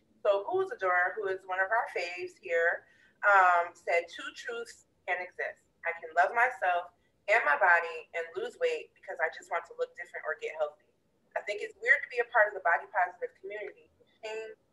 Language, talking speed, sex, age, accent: English, 210 wpm, female, 30-49, American